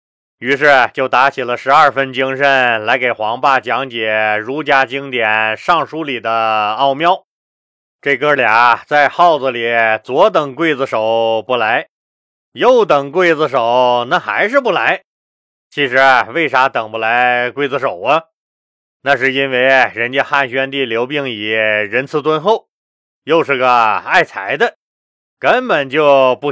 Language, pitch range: Chinese, 115-150 Hz